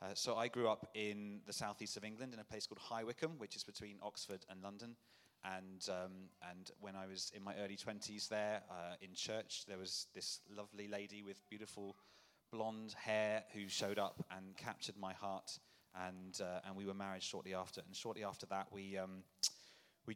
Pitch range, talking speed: 95-110 Hz, 200 wpm